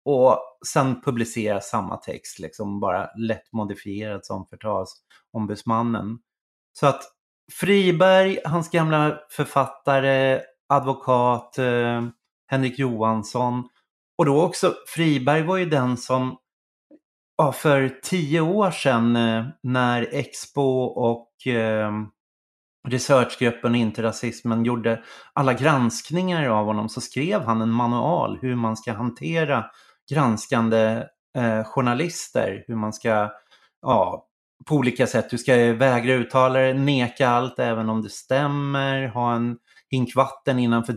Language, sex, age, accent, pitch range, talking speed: Swedish, male, 30-49, native, 115-135 Hz, 110 wpm